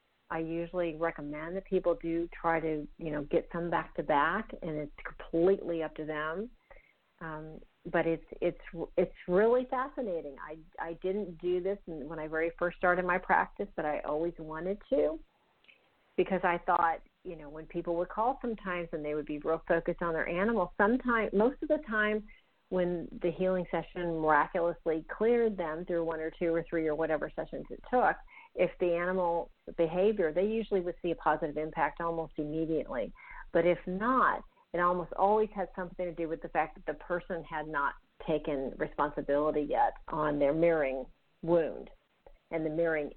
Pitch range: 155-190 Hz